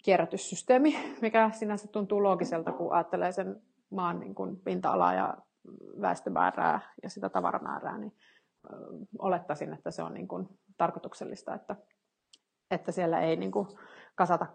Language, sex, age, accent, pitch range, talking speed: Finnish, female, 30-49, native, 190-250 Hz, 135 wpm